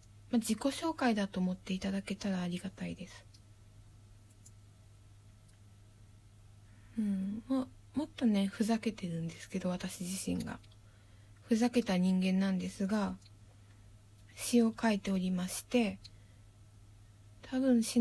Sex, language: female, Japanese